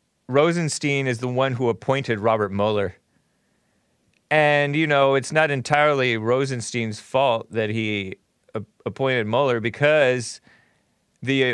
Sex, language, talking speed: male, English, 115 wpm